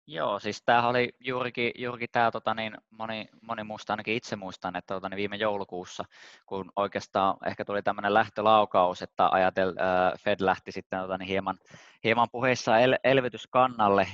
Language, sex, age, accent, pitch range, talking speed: Finnish, male, 20-39, native, 95-115 Hz, 155 wpm